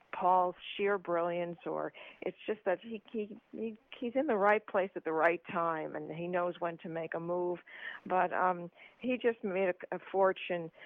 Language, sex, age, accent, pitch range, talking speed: English, female, 50-69, American, 170-205 Hz, 195 wpm